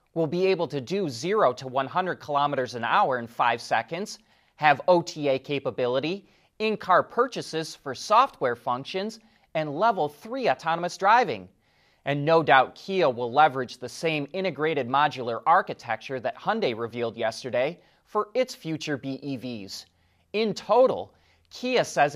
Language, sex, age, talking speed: English, male, 30-49, 135 wpm